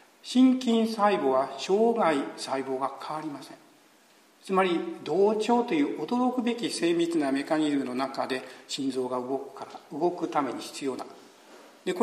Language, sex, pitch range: Japanese, male, 150-230 Hz